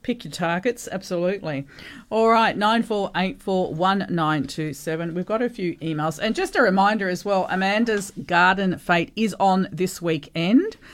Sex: female